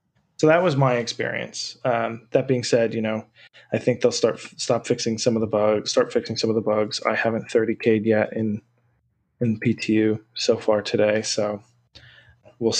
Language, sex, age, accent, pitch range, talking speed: English, male, 20-39, American, 110-135 Hz, 190 wpm